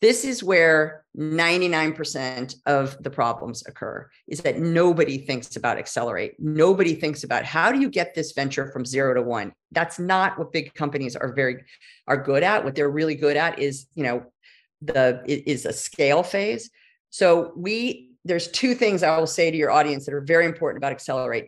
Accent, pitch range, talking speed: American, 135-170 Hz, 185 wpm